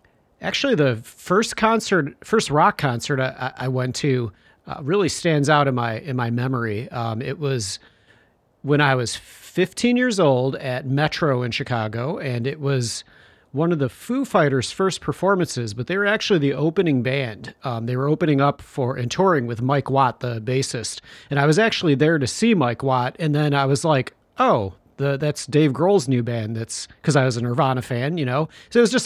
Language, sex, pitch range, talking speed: English, male, 120-150 Hz, 200 wpm